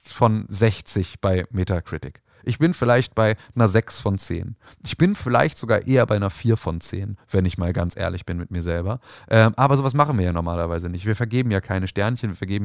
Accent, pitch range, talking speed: German, 100-130 Hz, 220 wpm